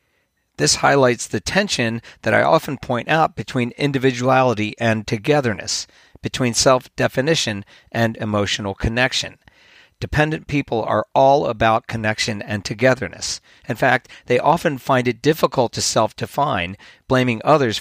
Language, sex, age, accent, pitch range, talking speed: English, male, 50-69, American, 105-130 Hz, 125 wpm